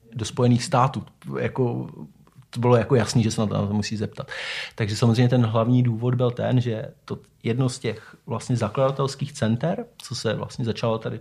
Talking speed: 180 wpm